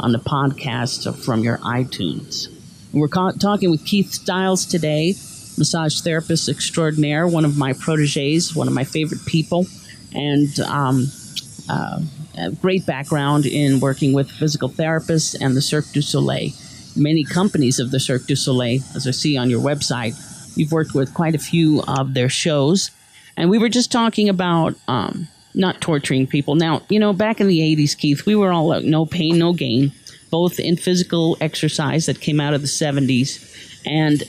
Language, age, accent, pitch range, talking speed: English, 40-59, American, 140-175 Hz, 175 wpm